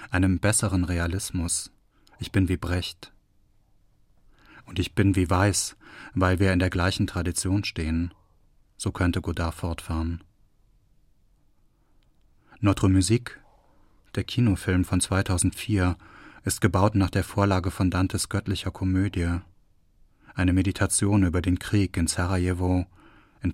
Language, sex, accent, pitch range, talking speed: German, male, German, 90-105 Hz, 115 wpm